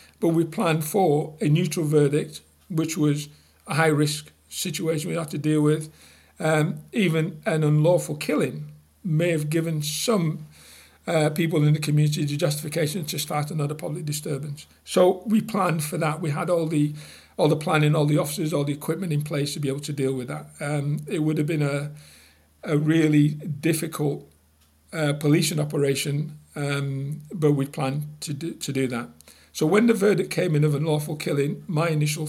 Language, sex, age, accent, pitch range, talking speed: English, male, 40-59, British, 135-160 Hz, 180 wpm